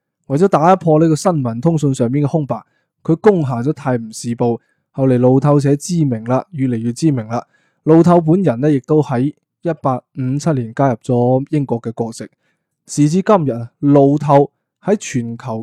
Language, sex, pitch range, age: Chinese, male, 125-160 Hz, 20-39